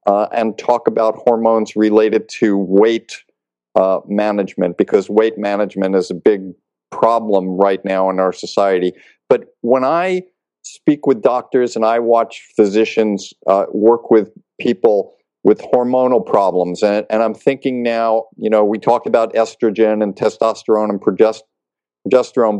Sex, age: male, 50-69